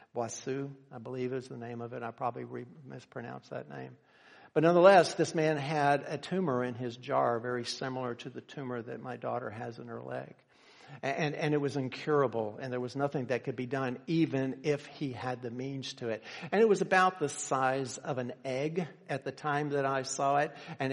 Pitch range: 120-140 Hz